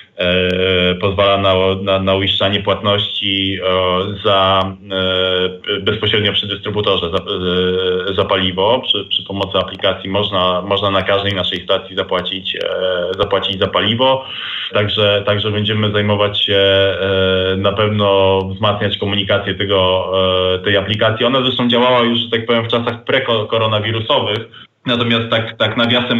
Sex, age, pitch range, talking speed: male, 20-39, 100-115 Hz, 135 wpm